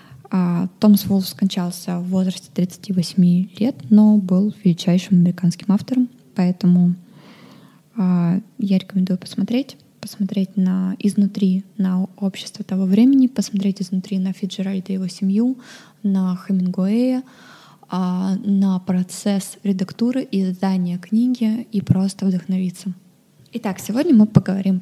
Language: Russian